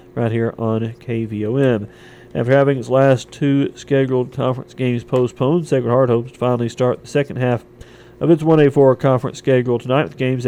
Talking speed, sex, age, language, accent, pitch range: 170 wpm, male, 40-59, English, American, 120-135 Hz